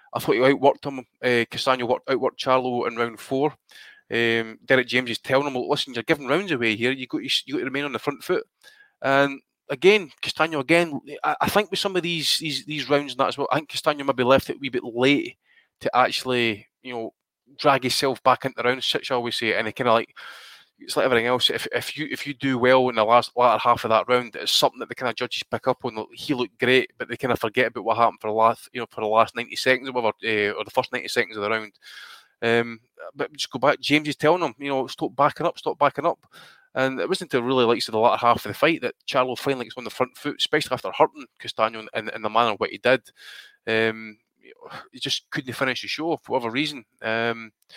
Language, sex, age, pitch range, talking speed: English, male, 20-39, 115-140 Hz, 265 wpm